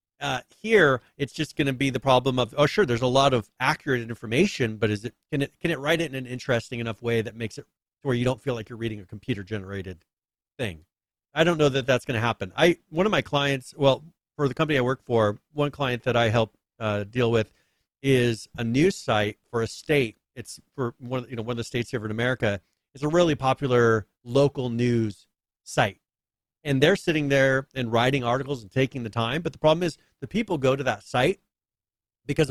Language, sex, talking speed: English, male, 225 wpm